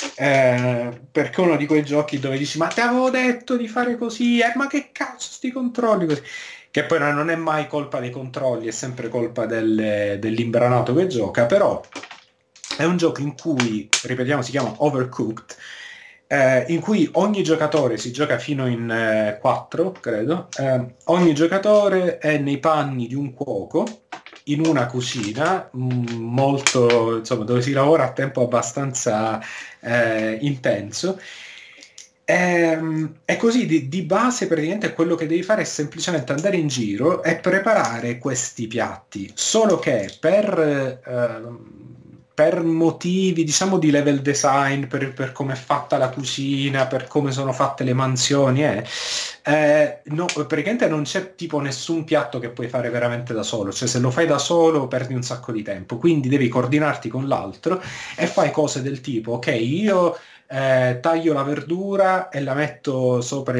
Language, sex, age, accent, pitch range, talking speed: Italian, male, 30-49, native, 125-165 Hz, 160 wpm